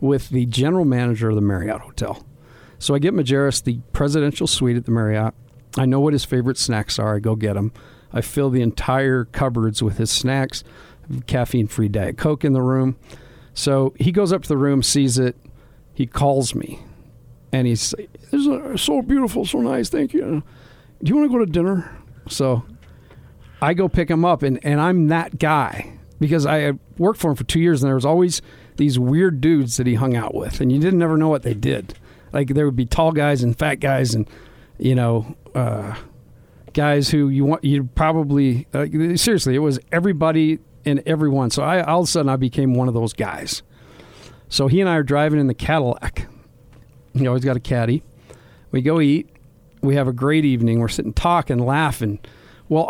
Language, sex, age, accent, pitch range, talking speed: English, male, 50-69, American, 120-155 Hz, 205 wpm